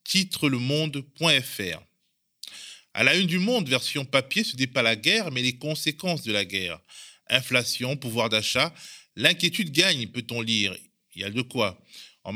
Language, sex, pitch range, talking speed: French, male, 115-155 Hz, 165 wpm